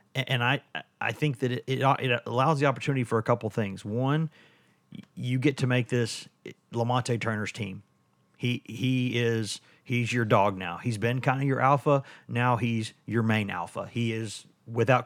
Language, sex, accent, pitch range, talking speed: English, male, American, 110-130 Hz, 175 wpm